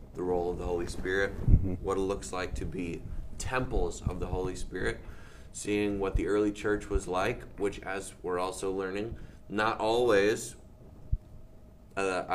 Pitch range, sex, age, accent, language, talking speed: 90-120 Hz, male, 20-39, American, English, 155 wpm